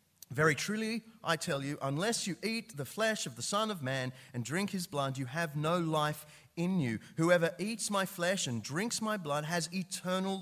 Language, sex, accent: English, male, Australian